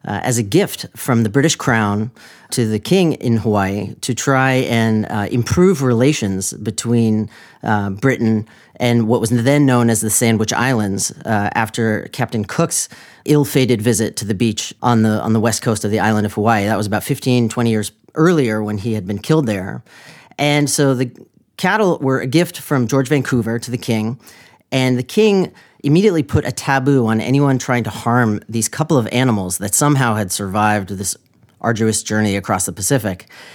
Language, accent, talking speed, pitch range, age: English, American, 180 wpm, 110-135 Hz, 40-59